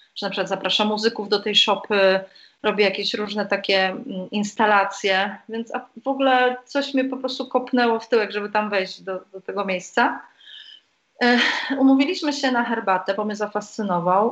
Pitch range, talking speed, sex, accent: 205-245 Hz, 155 wpm, female, native